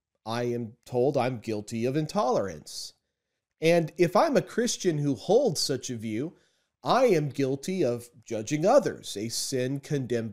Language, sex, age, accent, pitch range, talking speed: English, male, 30-49, American, 125-170 Hz, 150 wpm